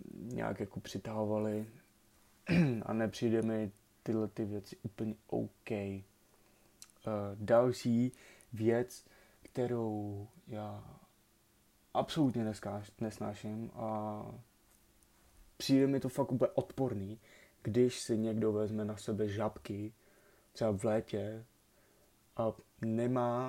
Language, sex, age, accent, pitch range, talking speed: Czech, male, 20-39, native, 105-120 Hz, 90 wpm